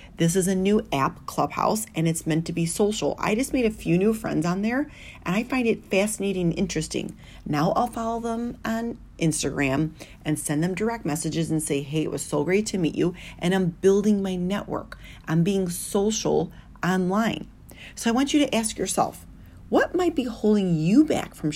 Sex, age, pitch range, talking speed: female, 40-59, 165-235 Hz, 200 wpm